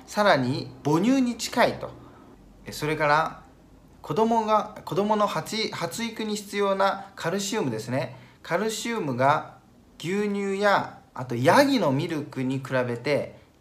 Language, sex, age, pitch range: Japanese, male, 40-59, 140-210 Hz